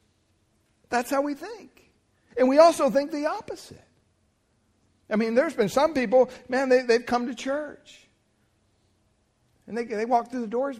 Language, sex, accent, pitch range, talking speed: English, male, American, 160-250 Hz, 160 wpm